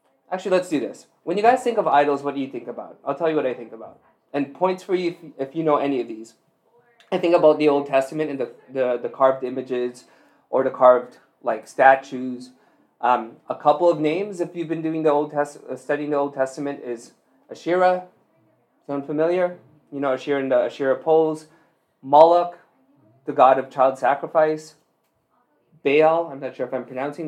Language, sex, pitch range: English, male, 135-165 Hz